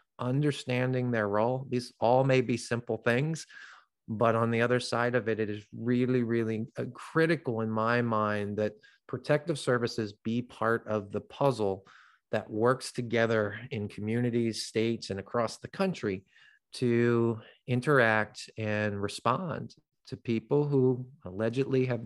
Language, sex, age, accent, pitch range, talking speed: English, male, 30-49, American, 105-125 Hz, 140 wpm